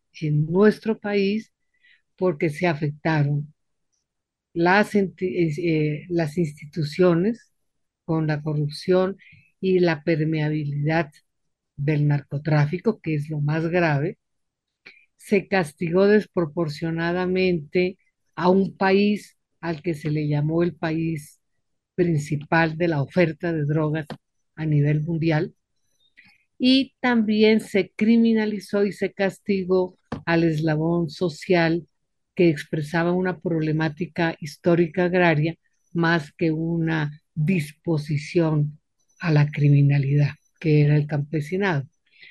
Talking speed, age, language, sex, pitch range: 100 wpm, 50-69, Spanish, female, 155-200 Hz